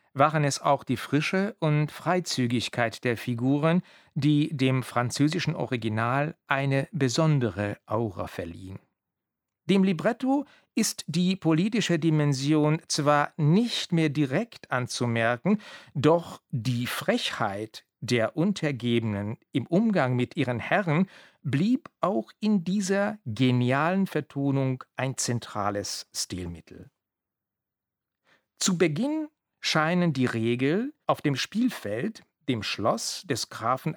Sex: male